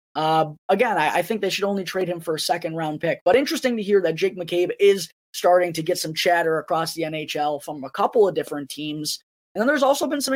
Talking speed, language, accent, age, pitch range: 250 wpm, English, American, 20-39, 155-210 Hz